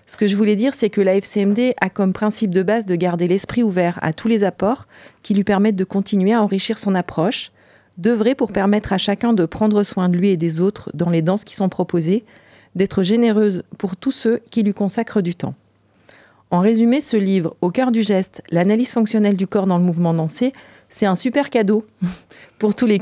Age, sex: 40-59, female